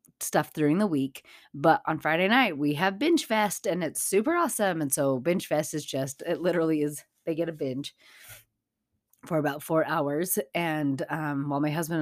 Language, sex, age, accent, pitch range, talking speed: English, female, 30-49, American, 150-220 Hz, 195 wpm